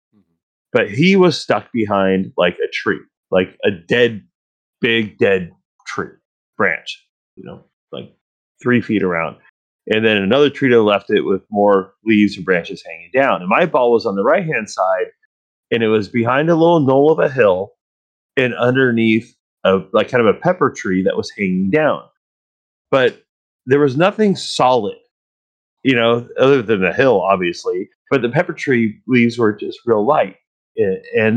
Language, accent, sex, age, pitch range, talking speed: English, American, male, 30-49, 105-145 Hz, 170 wpm